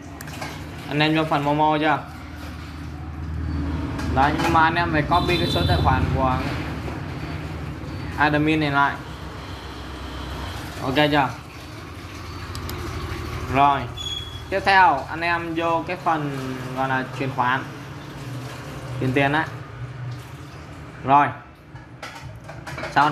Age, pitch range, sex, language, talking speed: 20-39, 125-150 Hz, male, Vietnamese, 110 wpm